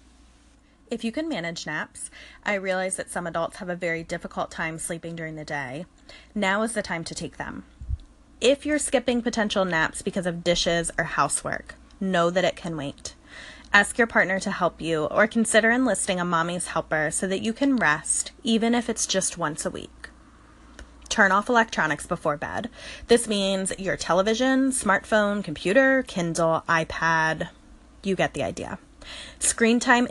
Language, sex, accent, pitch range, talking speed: English, female, American, 170-230 Hz, 165 wpm